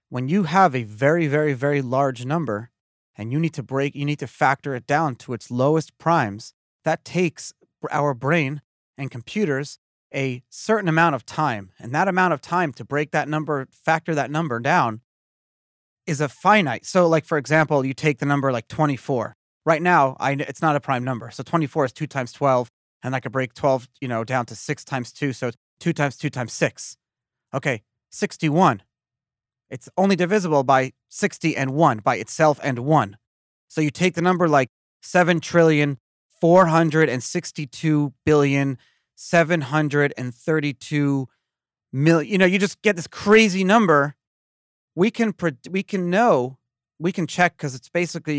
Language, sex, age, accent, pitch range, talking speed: English, male, 30-49, American, 125-160 Hz, 175 wpm